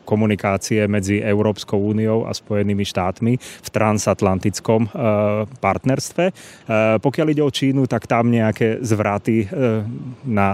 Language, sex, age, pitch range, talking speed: Slovak, male, 30-49, 100-115 Hz, 110 wpm